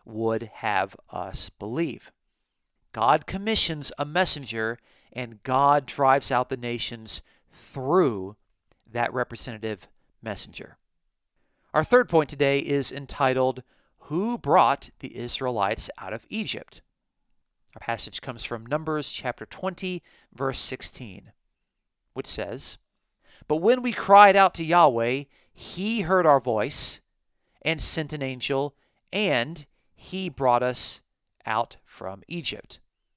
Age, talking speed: 40-59, 115 wpm